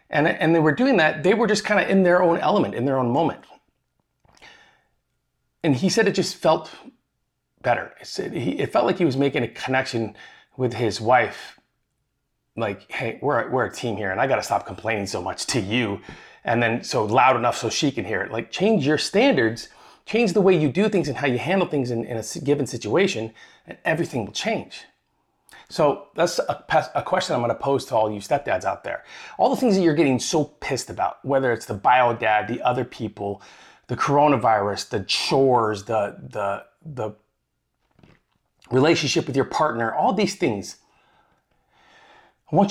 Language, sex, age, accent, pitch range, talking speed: English, male, 30-49, American, 115-170 Hz, 195 wpm